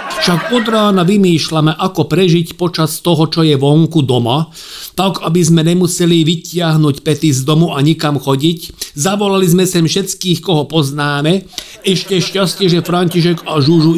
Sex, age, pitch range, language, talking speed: male, 50-69, 140-180 Hz, Slovak, 150 wpm